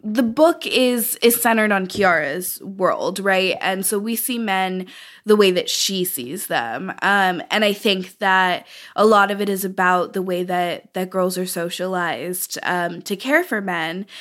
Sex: female